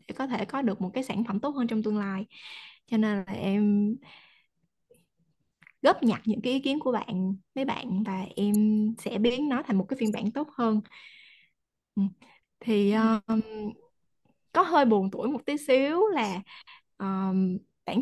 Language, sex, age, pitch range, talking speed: Vietnamese, female, 20-39, 205-260 Hz, 160 wpm